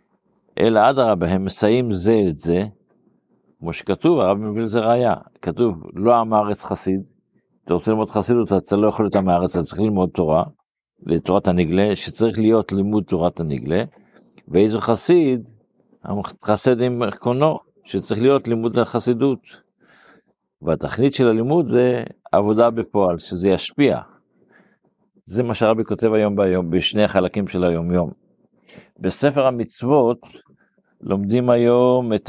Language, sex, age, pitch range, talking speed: Hebrew, male, 50-69, 95-115 Hz, 135 wpm